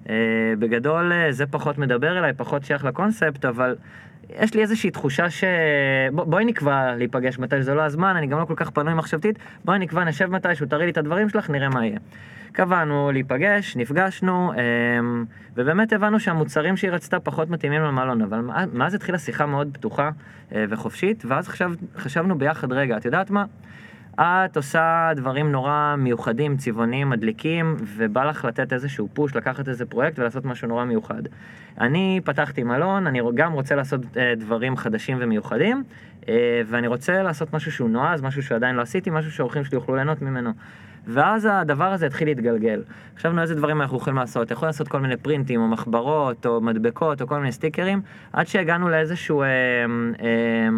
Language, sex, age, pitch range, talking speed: Hebrew, male, 20-39, 120-170 Hz, 170 wpm